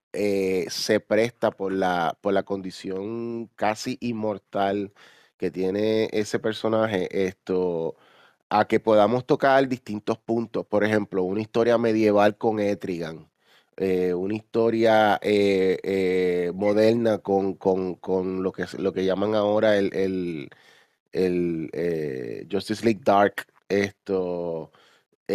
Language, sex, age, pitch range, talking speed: Spanish, male, 30-49, 95-115 Hz, 125 wpm